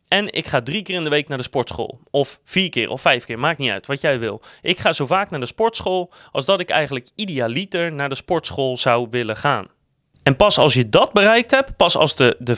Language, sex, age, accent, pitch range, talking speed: Dutch, male, 30-49, Dutch, 130-190 Hz, 250 wpm